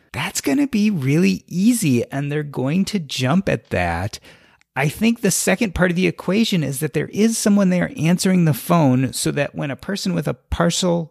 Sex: male